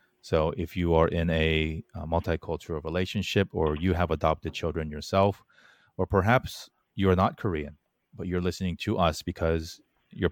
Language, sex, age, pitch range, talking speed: English, male, 30-49, 80-95 Hz, 165 wpm